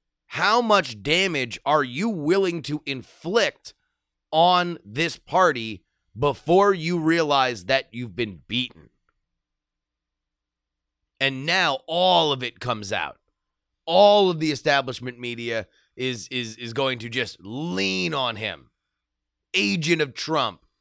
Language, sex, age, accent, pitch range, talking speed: English, male, 30-49, American, 100-165 Hz, 120 wpm